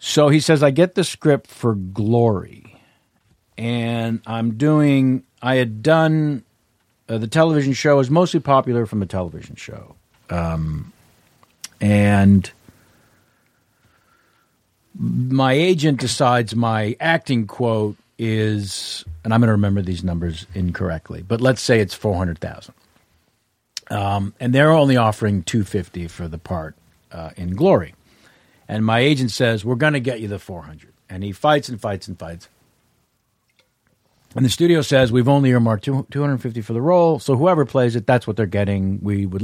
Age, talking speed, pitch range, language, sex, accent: 50-69, 150 wpm, 100-130 Hz, English, male, American